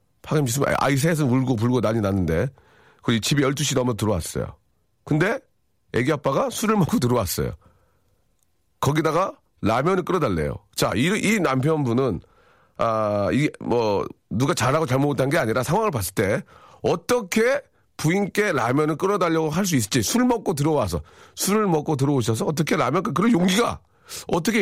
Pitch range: 105-165 Hz